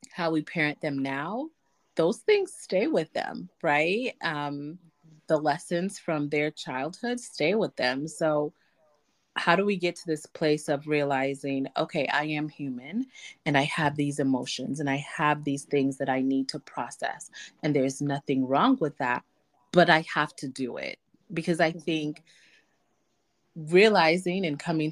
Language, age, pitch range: English, 30-49, 140-175 Hz